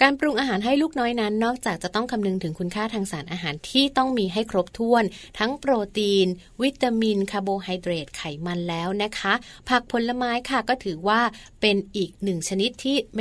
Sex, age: female, 20-39